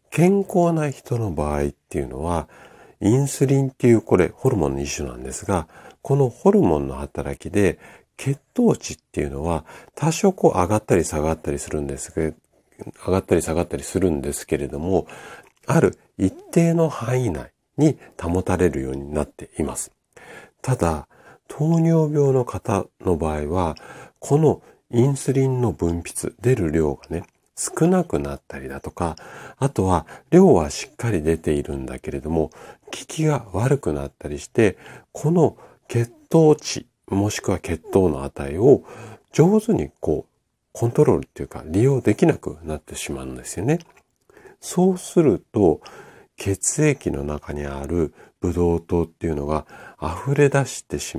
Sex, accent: male, native